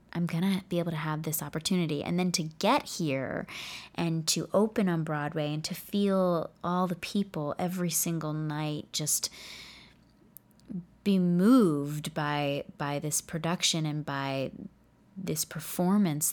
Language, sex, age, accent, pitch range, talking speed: English, female, 20-39, American, 155-185 Hz, 140 wpm